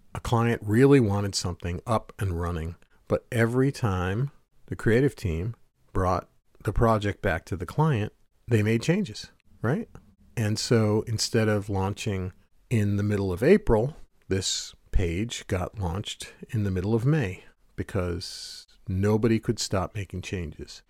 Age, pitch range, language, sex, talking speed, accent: 40-59, 95-125 Hz, English, male, 145 wpm, American